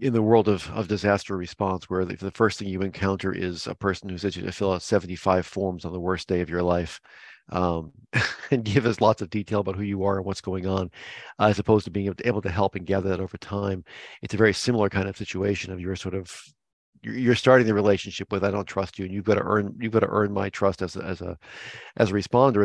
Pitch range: 95-105 Hz